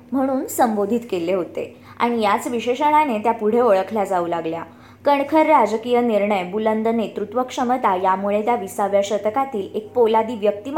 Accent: native